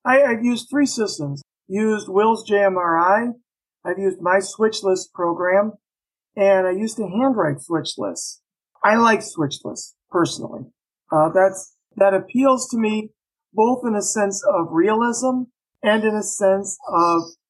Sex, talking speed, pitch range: male, 135 wpm, 185-240 Hz